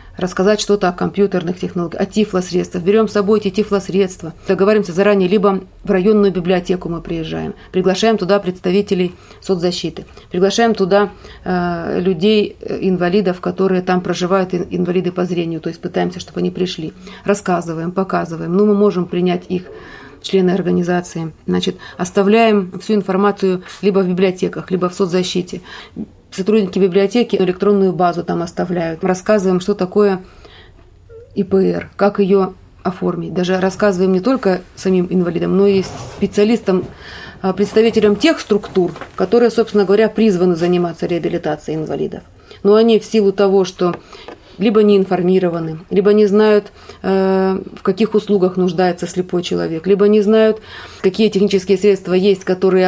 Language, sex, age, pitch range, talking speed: Russian, female, 30-49, 180-205 Hz, 135 wpm